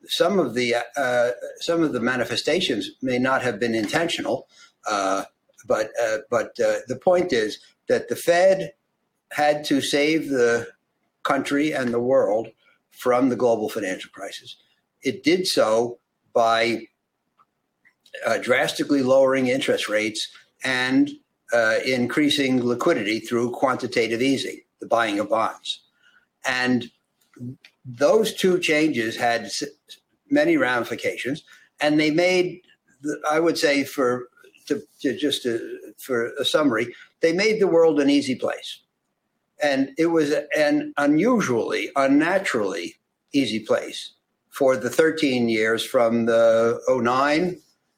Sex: male